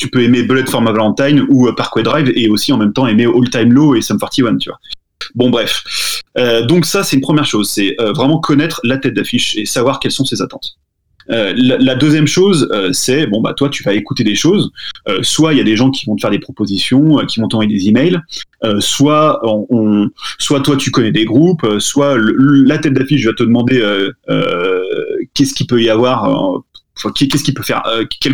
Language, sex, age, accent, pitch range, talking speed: French, male, 30-49, French, 110-145 Hz, 235 wpm